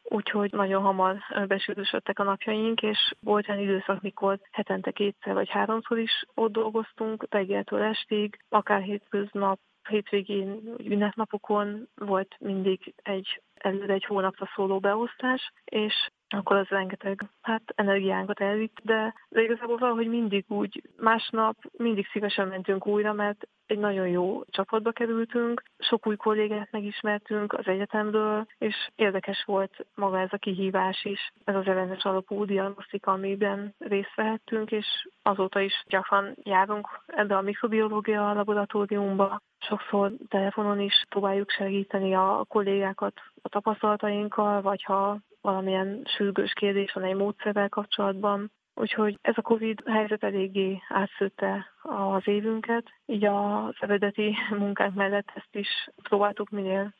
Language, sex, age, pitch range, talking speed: Hungarian, female, 20-39, 195-220 Hz, 130 wpm